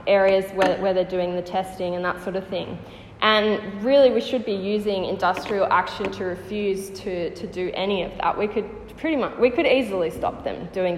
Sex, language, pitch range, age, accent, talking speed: female, English, 180-210 Hz, 10-29, Australian, 210 wpm